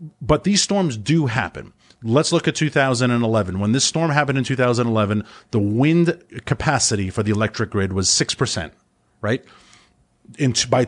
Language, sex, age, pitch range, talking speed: English, male, 30-49, 115-170 Hz, 145 wpm